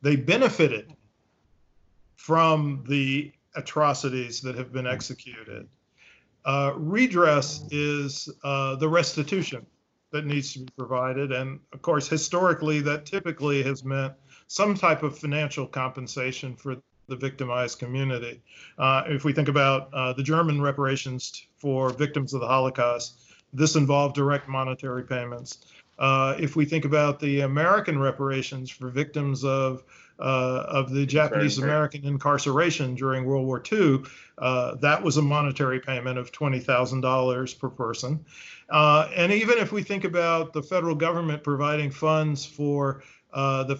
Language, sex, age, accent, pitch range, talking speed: English, male, 40-59, American, 130-150 Hz, 140 wpm